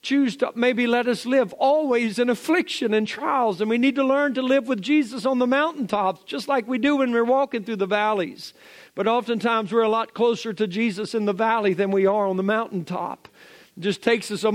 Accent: American